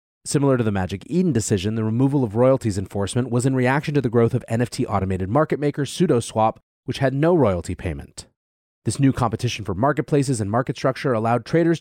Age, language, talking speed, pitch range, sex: 30-49, English, 190 wpm, 100-140 Hz, male